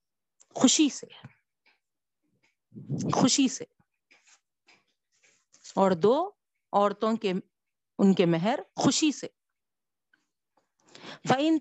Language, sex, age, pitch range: Urdu, female, 50-69, 200-275 Hz